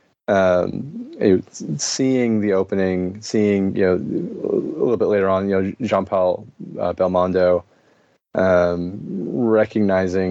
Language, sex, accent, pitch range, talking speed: English, male, American, 95-110 Hz, 115 wpm